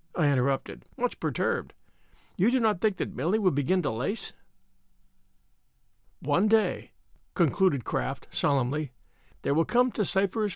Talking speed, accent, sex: 135 wpm, American, male